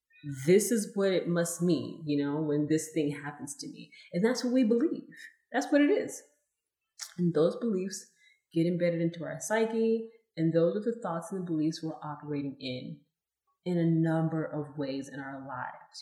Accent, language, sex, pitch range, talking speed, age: American, English, female, 150-180 Hz, 185 wpm, 30-49